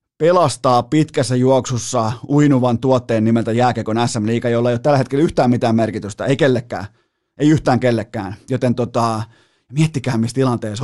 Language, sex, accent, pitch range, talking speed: Finnish, male, native, 120-150 Hz, 145 wpm